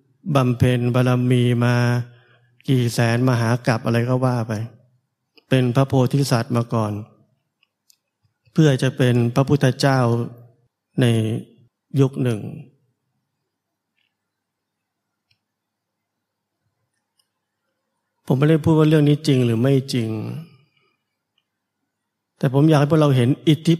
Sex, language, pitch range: male, Thai, 120-140 Hz